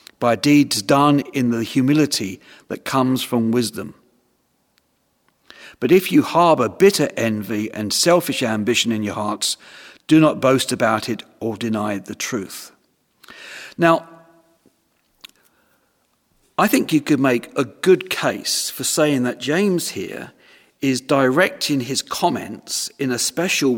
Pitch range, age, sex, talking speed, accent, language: 125-165 Hz, 50-69, male, 130 wpm, British, English